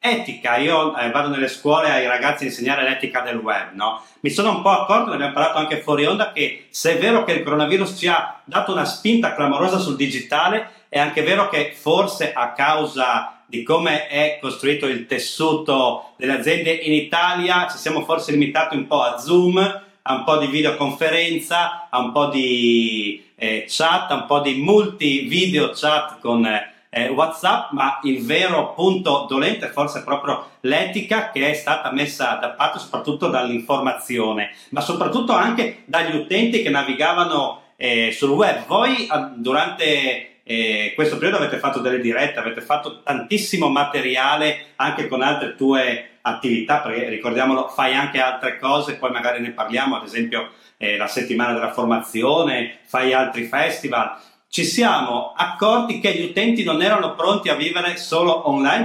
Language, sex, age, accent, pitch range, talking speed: Italian, male, 40-59, native, 130-175 Hz, 170 wpm